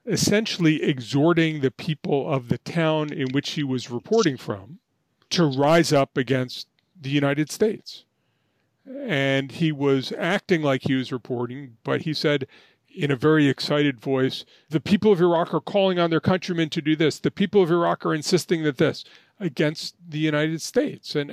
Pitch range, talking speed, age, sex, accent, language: 135-170 Hz, 170 wpm, 40-59, male, American, English